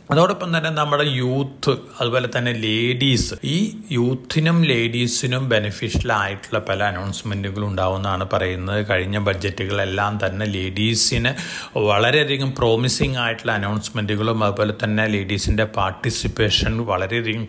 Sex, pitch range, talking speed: male, 105-135 Hz, 105 wpm